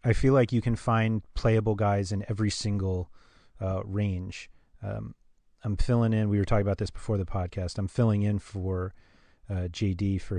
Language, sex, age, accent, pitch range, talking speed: English, male, 30-49, American, 95-110 Hz, 185 wpm